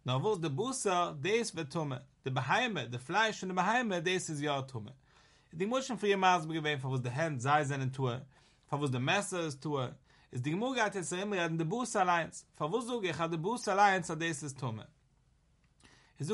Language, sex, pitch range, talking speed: English, male, 135-190 Hz, 115 wpm